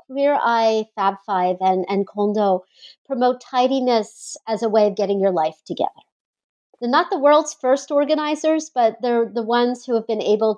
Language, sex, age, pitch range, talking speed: English, female, 40-59, 195-250 Hz, 175 wpm